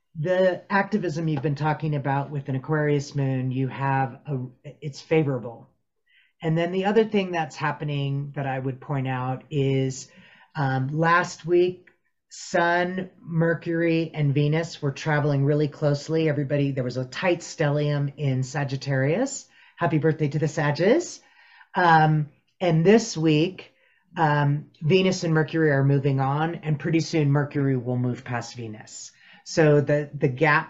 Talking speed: 145 wpm